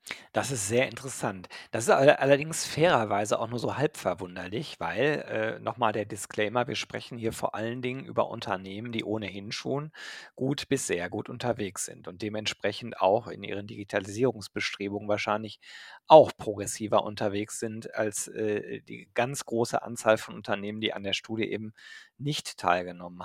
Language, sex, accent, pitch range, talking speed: German, male, German, 105-120 Hz, 155 wpm